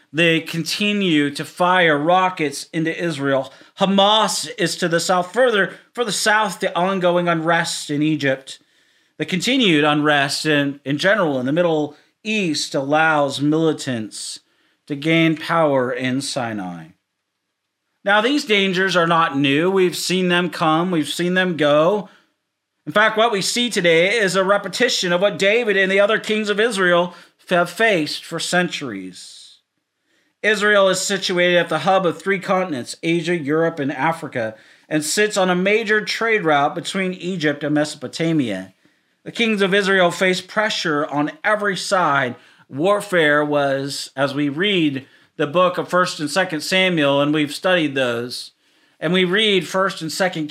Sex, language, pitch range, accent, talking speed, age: male, English, 150-195 Hz, American, 155 wpm, 40-59